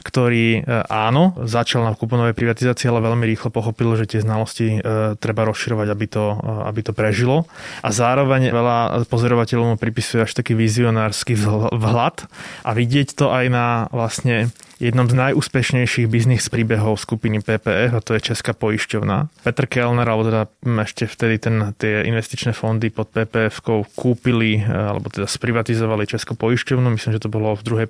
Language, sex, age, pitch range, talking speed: Slovak, male, 20-39, 110-125 Hz, 155 wpm